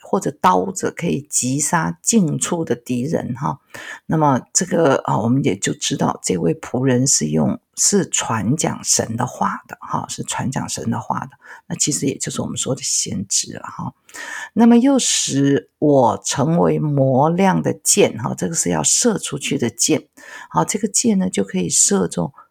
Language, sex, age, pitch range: Chinese, female, 50-69, 130-210 Hz